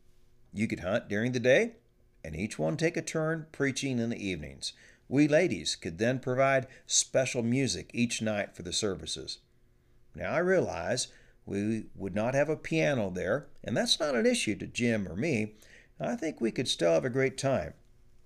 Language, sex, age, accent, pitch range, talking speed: English, male, 50-69, American, 110-135 Hz, 185 wpm